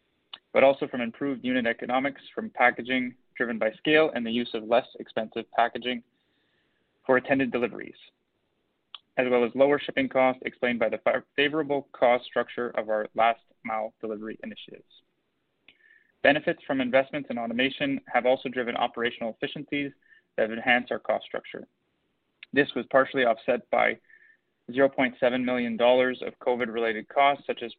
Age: 20-39